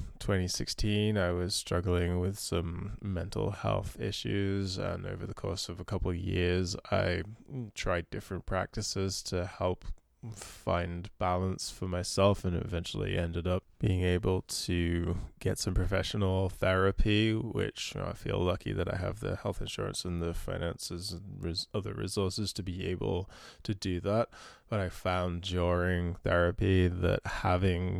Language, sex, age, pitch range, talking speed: English, male, 20-39, 90-100 Hz, 145 wpm